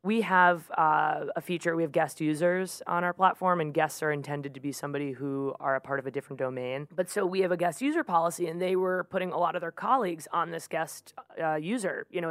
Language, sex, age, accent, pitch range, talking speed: Hebrew, female, 20-39, American, 150-180 Hz, 250 wpm